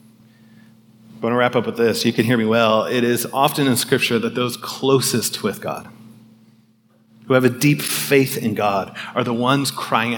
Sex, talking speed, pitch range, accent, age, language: male, 195 wpm, 115-150 Hz, American, 30-49, English